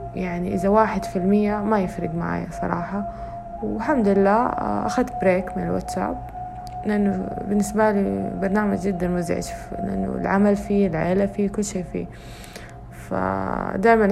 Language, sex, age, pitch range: Arabic, female, 20-39, 170-195 Hz